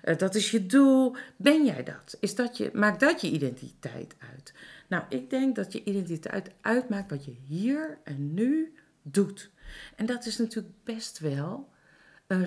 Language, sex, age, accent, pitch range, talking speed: Dutch, female, 40-59, Dutch, 170-225 Hz, 160 wpm